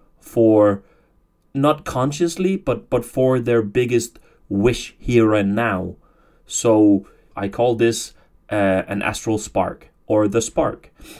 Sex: male